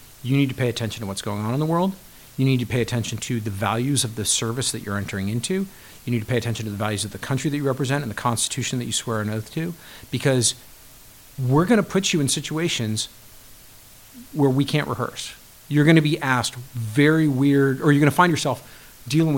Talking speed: 235 wpm